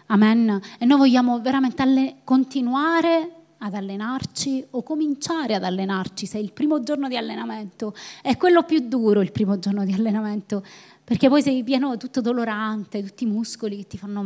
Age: 20-39